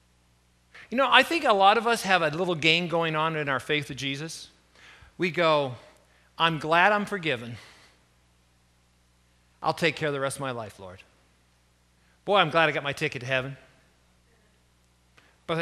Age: 40-59